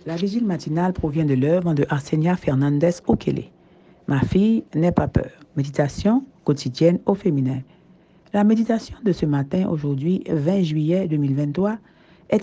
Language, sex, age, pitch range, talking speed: French, female, 60-79, 160-190 Hz, 135 wpm